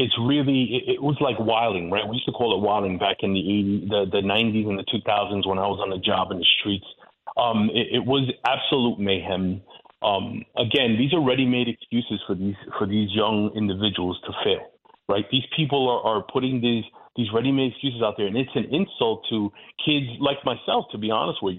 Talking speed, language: 215 wpm, English